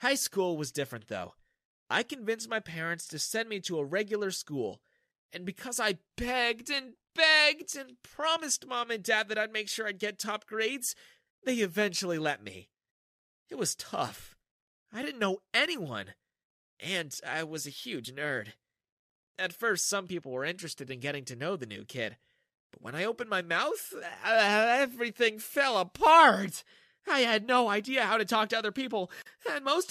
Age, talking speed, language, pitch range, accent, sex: 30-49, 175 wpm, English, 150-250 Hz, American, male